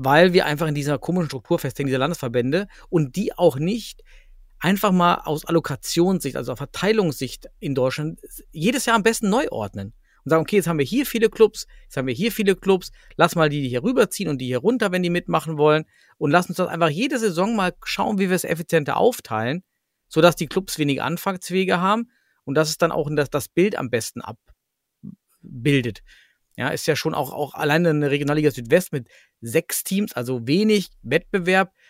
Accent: German